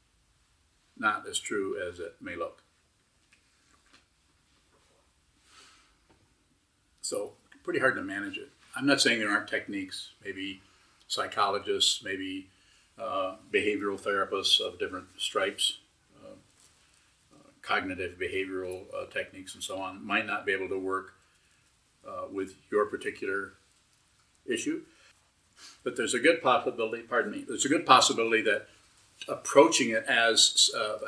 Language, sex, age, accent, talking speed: English, male, 50-69, American, 120 wpm